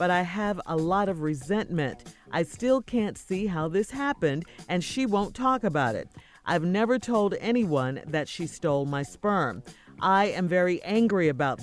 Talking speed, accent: 175 wpm, American